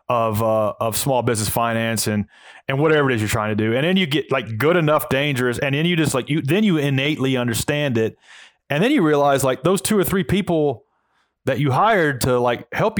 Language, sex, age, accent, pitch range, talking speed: English, male, 30-49, American, 120-155 Hz, 230 wpm